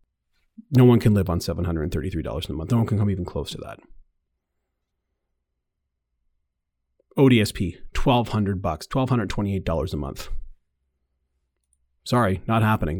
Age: 30-49